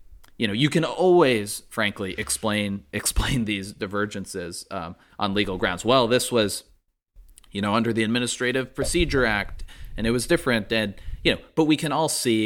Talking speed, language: 175 wpm, English